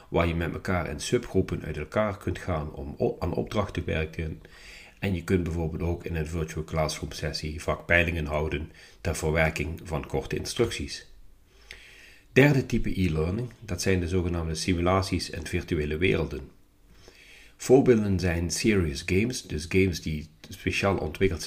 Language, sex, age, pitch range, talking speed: Dutch, male, 40-59, 80-95 Hz, 145 wpm